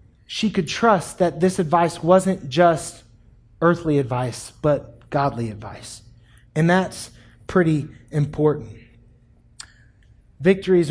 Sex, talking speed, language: male, 100 wpm, English